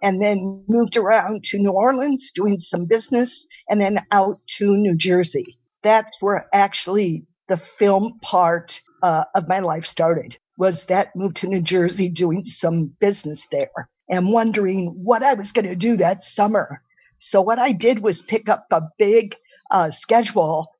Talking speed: 165 wpm